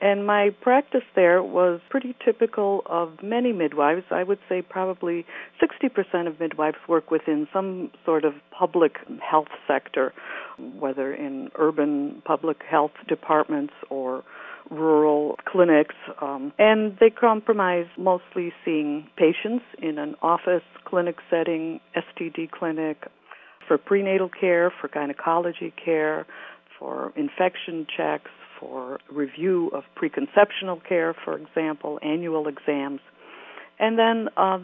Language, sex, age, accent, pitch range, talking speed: English, female, 60-79, American, 155-200 Hz, 120 wpm